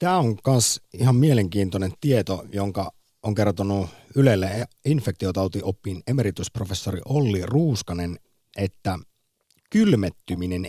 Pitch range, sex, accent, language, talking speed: 90-115 Hz, male, native, Finnish, 90 wpm